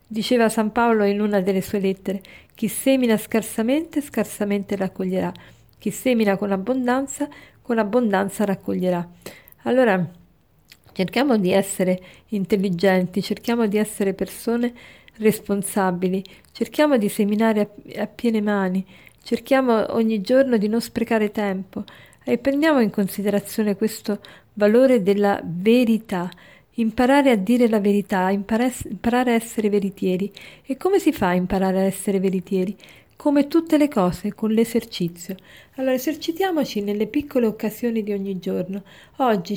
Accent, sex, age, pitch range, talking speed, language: native, female, 40-59, 195-245 Hz, 130 wpm, Italian